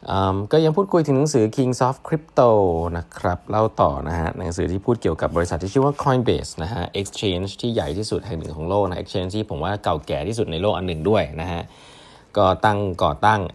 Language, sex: Thai, male